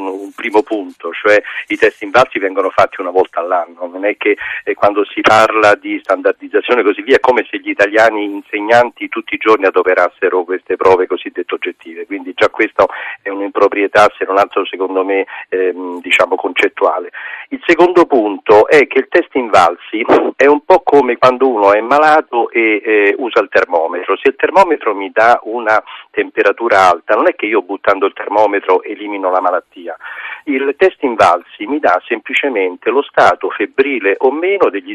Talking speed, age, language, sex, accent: 175 wpm, 50-69, Italian, male, native